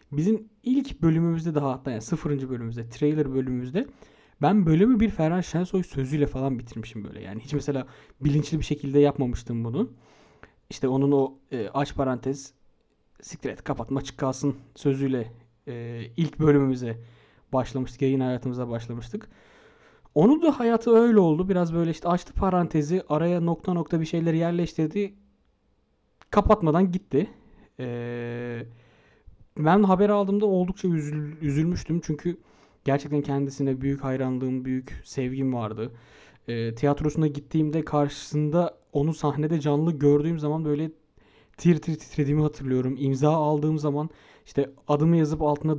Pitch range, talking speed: 130-165 Hz, 125 wpm